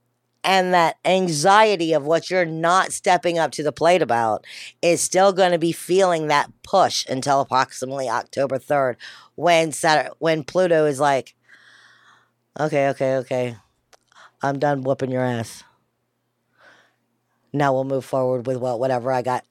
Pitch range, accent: 135-170 Hz, American